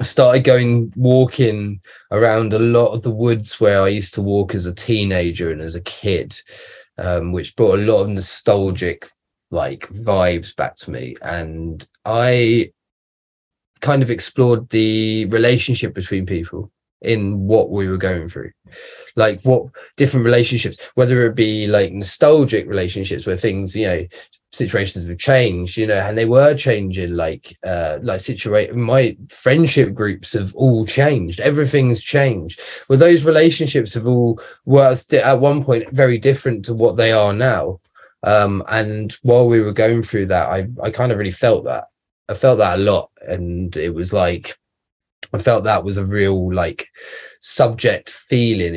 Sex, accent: male, British